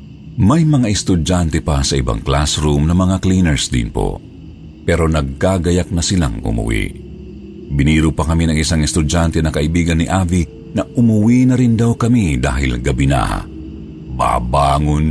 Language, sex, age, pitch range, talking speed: Filipino, male, 50-69, 75-105 Hz, 145 wpm